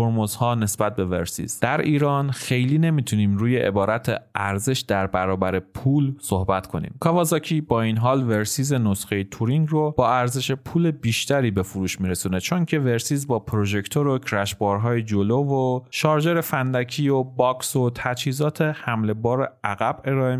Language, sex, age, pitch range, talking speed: Persian, male, 30-49, 105-140 Hz, 150 wpm